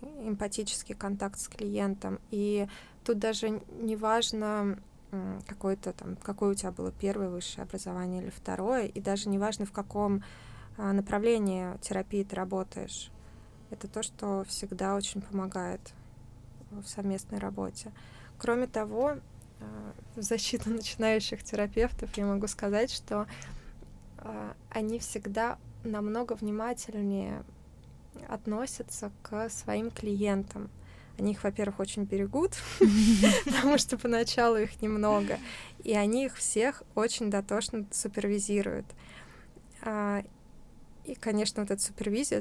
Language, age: Russian, 20-39